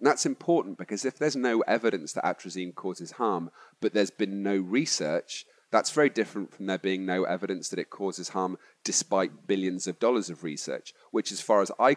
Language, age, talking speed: English, 40-59, 200 wpm